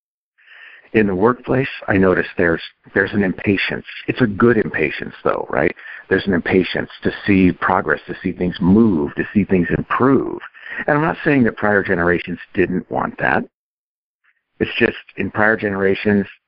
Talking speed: 160 wpm